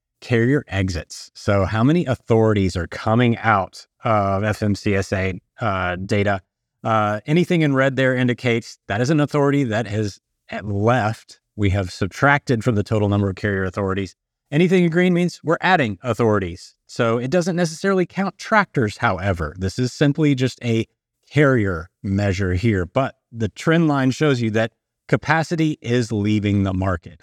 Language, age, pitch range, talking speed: English, 30-49, 105-135 Hz, 155 wpm